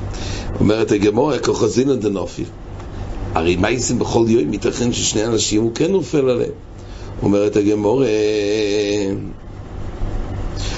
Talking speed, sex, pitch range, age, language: 100 wpm, male, 100-145 Hz, 60-79, English